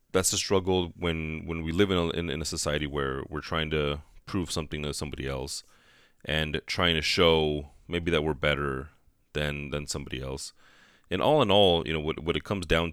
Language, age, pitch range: English, 30-49, 75-90 Hz